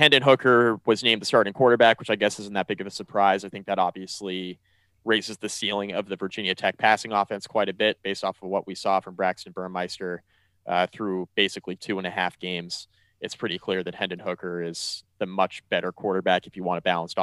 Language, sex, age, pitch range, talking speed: English, male, 30-49, 95-105 Hz, 225 wpm